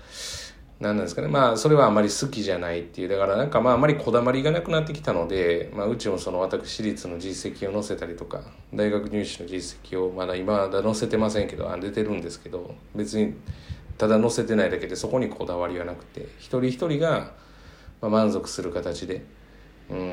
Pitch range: 85-110 Hz